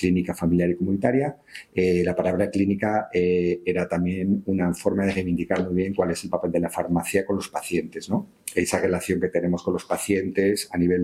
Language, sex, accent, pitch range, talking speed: Spanish, male, Spanish, 85-90 Hz, 205 wpm